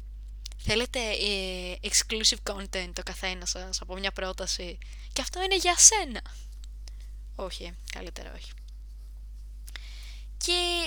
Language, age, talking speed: Greek, 20-39, 100 wpm